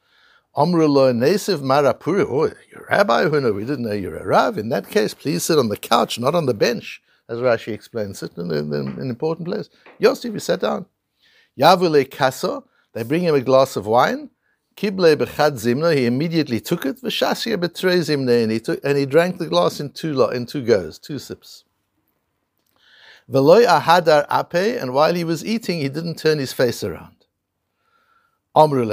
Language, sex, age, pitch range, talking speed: English, male, 60-79, 115-175 Hz, 170 wpm